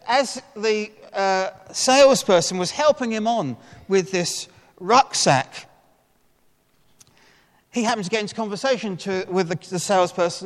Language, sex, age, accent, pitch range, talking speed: English, male, 40-59, British, 140-205 Hz, 125 wpm